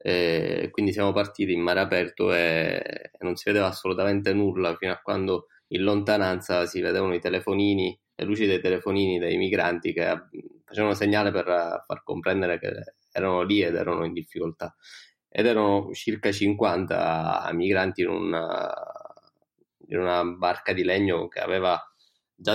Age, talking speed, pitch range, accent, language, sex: 20-39, 145 wpm, 90-105 Hz, native, Italian, male